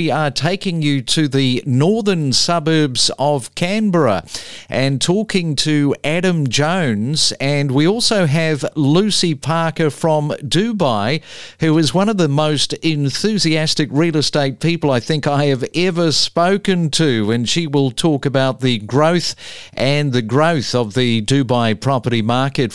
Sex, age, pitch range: male, 50-69, 125-160 Hz